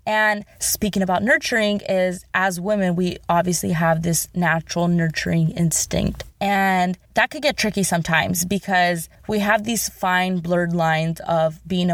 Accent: American